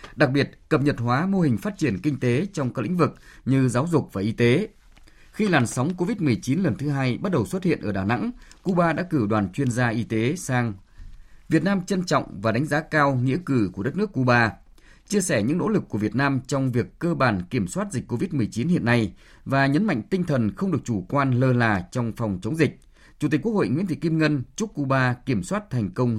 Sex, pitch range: male, 115-155 Hz